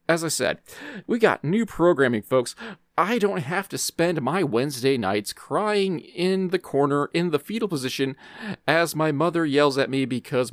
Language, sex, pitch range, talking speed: English, male, 110-160 Hz, 175 wpm